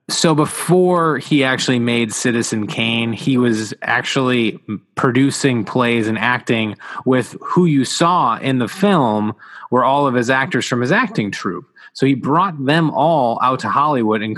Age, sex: 20-39, male